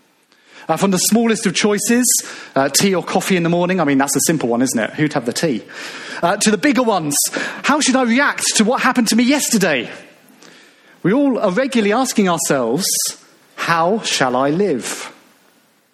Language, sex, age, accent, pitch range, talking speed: English, male, 40-59, British, 165-225 Hz, 190 wpm